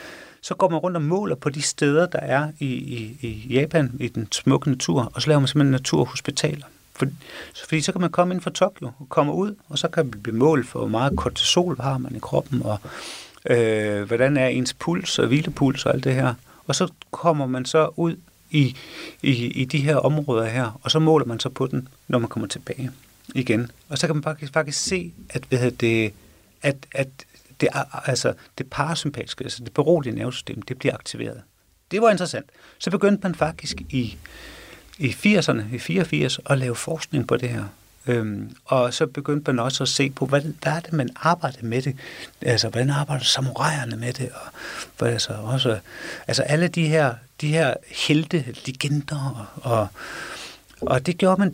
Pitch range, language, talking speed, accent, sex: 125-160 Hz, Danish, 200 wpm, native, male